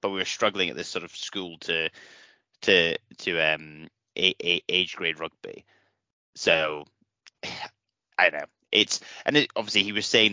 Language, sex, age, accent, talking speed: English, male, 30-49, British, 155 wpm